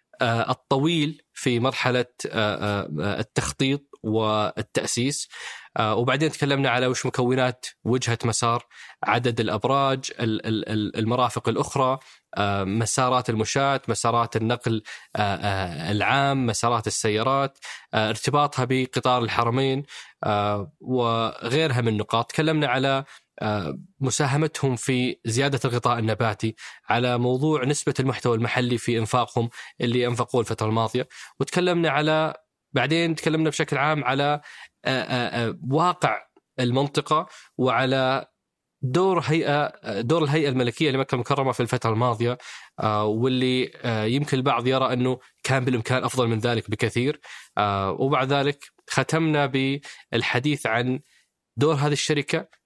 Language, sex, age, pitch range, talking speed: Arabic, male, 20-39, 115-140 Hz, 95 wpm